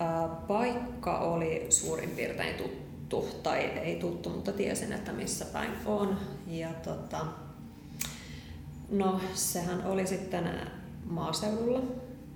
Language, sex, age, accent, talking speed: Finnish, female, 20-39, native, 100 wpm